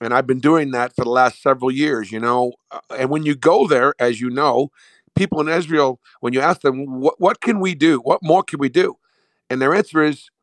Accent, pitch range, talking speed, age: American, 120-150 Hz, 235 wpm, 50-69